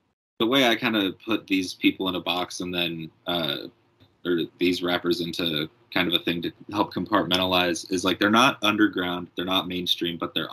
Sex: male